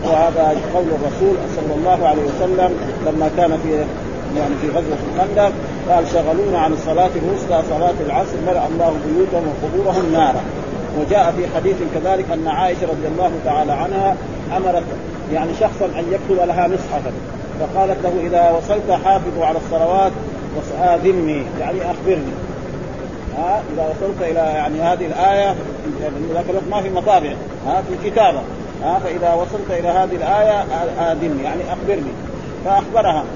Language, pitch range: Arabic, 165-190 Hz